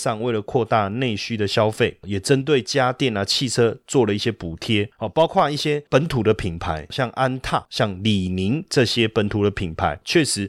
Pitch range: 100-145 Hz